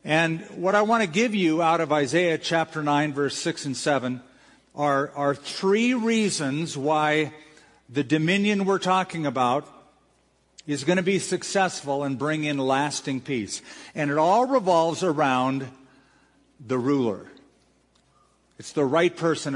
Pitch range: 140-180 Hz